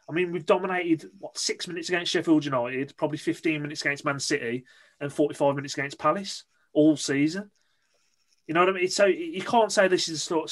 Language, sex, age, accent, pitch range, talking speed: English, male, 30-49, British, 140-190 Hz, 200 wpm